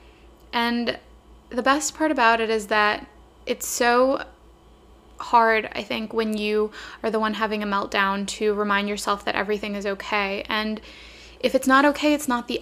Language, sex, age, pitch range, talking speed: English, female, 10-29, 210-240 Hz, 170 wpm